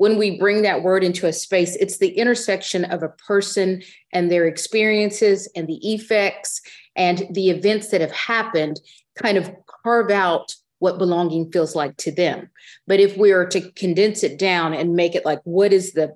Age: 40-59